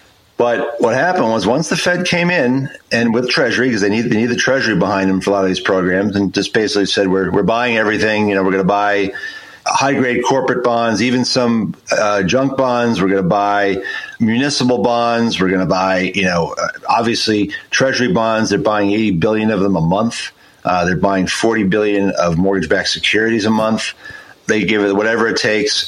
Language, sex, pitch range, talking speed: English, male, 100-125 Hz, 210 wpm